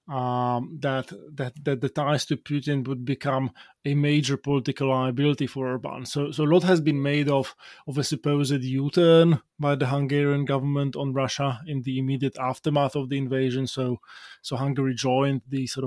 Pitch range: 135-145 Hz